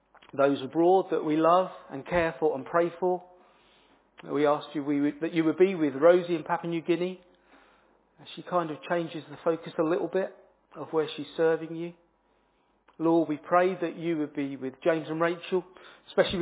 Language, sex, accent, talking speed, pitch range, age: English, male, British, 180 wpm, 145-175 Hz, 40-59